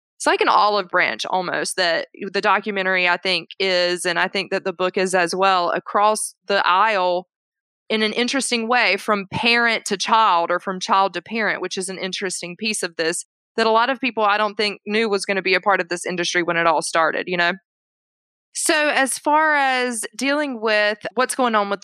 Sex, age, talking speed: female, 20-39, 215 wpm